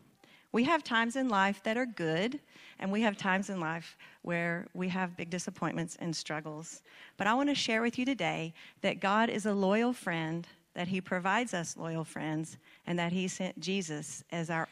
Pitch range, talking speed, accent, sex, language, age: 165-195 Hz, 195 wpm, American, female, English, 40-59